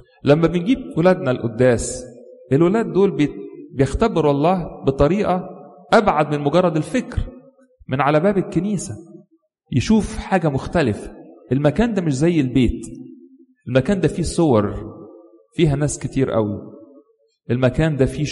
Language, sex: English, male